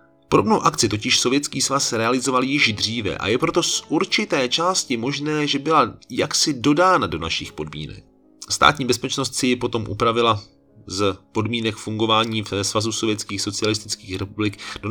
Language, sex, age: Czech, male, 30-49